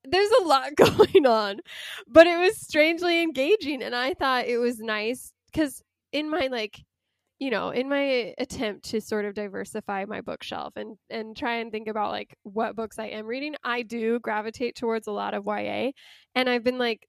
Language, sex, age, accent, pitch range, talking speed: English, female, 10-29, American, 205-255 Hz, 195 wpm